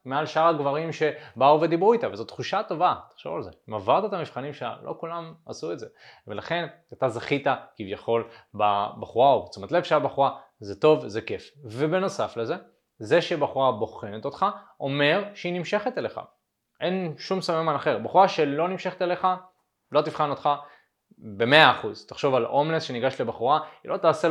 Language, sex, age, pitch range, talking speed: Hebrew, male, 20-39, 115-165 Hz, 165 wpm